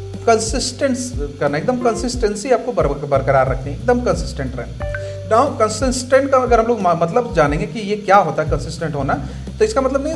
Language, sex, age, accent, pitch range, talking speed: Hindi, male, 40-59, native, 170-240 Hz, 170 wpm